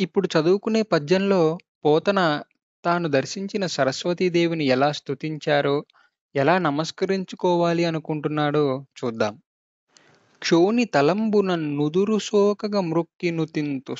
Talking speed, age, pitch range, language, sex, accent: 75 wpm, 20-39, 150-195 Hz, Telugu, male, native